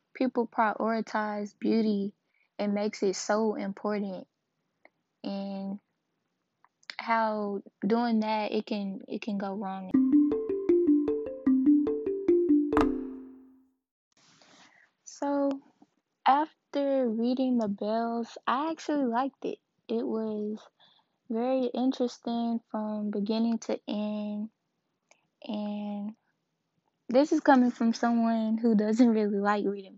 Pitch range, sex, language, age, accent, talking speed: 210-250 Hz, female, English, 10-29, American, 90 wpm